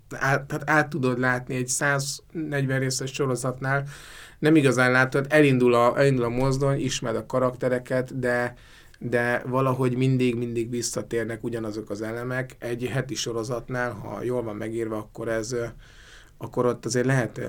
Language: Hungarian